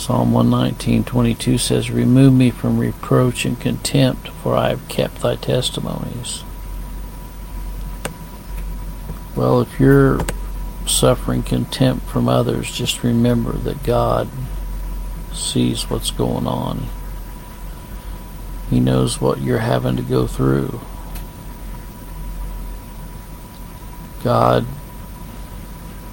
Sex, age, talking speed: male, 60-79, 90 wpm